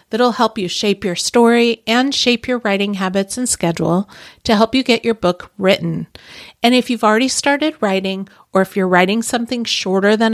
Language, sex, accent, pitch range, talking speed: English, female, American, 185-235 Hz, 190 wpm